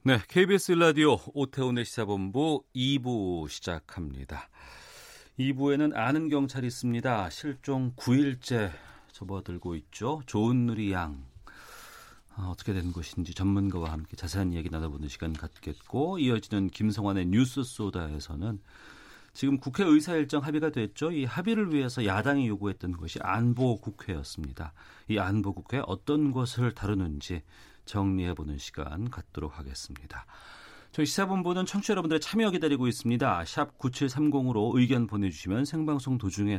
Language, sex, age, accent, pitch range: Korean, male, 40-59, native, 90-140 Hz